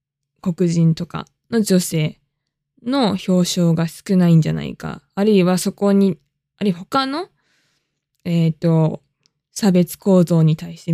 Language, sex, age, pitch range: Japanese, female, 20-39, 155-195 Hz